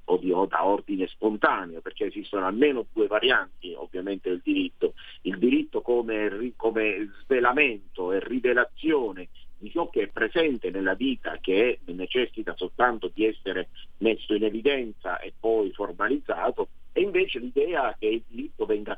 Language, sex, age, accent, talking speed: Italian, male, 50-69, native, 140 wpm